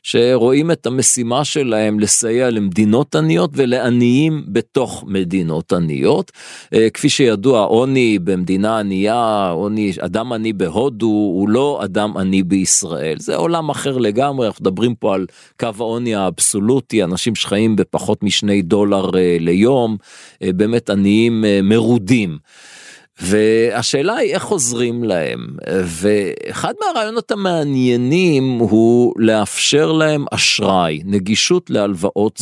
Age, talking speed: 40-59, 110 wpm